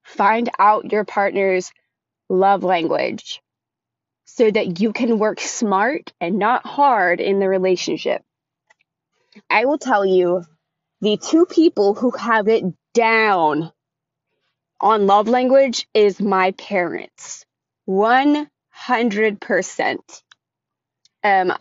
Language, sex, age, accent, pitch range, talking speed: English, female, 20-39, American, 185-230 Hz, 105 wpm